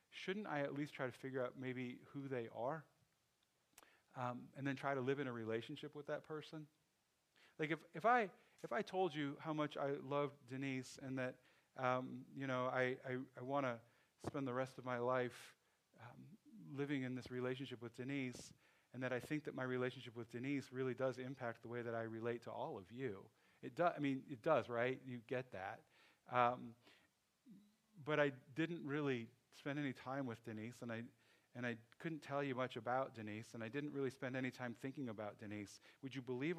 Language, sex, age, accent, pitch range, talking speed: English, male, 40-59, American, 120-150 Hz, 205 wpm